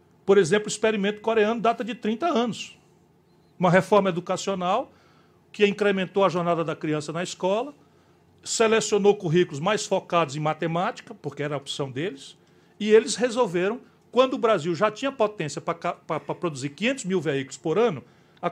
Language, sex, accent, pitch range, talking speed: Portuguese, male, Brazilian, 170-220 Hz, 160 wpm